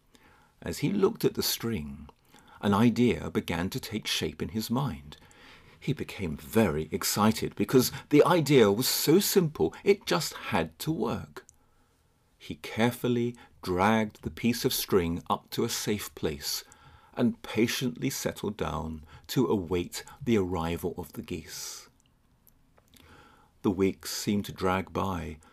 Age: 40-59